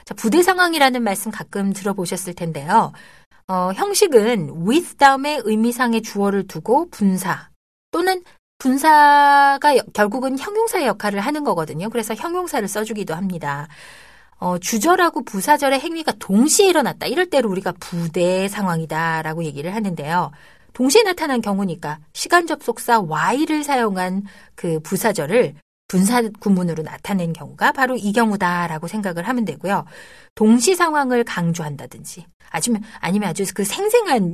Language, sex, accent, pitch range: Korean, female, native, 180-280 Hz